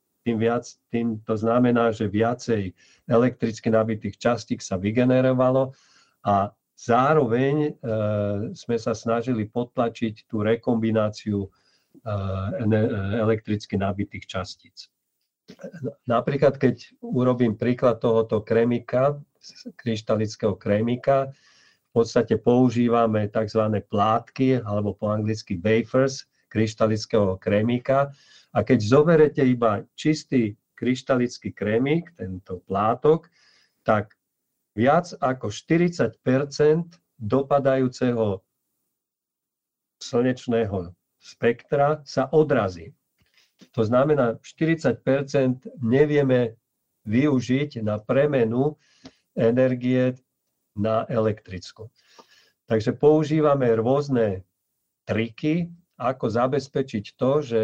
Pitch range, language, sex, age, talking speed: 110-135 Hz, Slovak, male, 50-69, 85 wpm